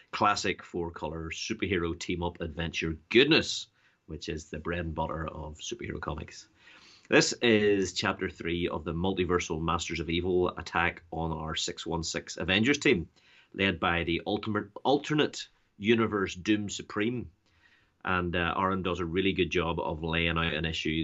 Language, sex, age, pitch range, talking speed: English, male, 30-49, 85-105 Hz, 150 wpm